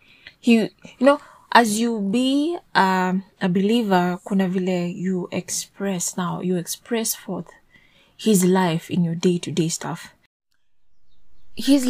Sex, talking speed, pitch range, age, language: female, 125 wpm, 180-220 Hz, 20-39, English